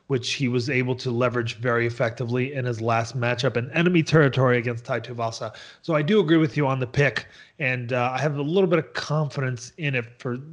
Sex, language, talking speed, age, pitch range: male, English, 215 wpm, 30-49, 120-145 Hz